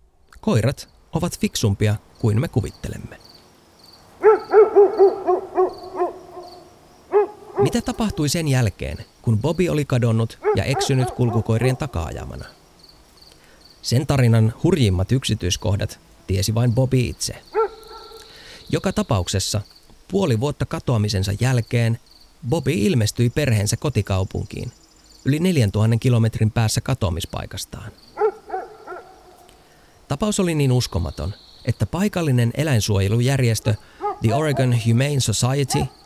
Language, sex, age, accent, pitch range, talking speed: Finnish, male, 30-49, native, 105-165 Hz, 85 wpm